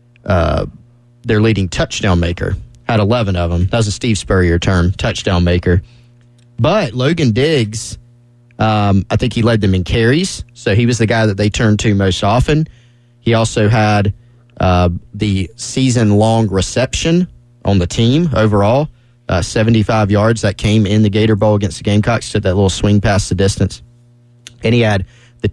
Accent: American